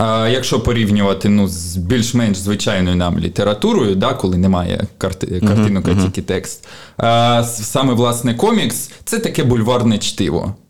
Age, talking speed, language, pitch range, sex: 20-39, 110 wpm, Ukrainian, 100-125 Hz, male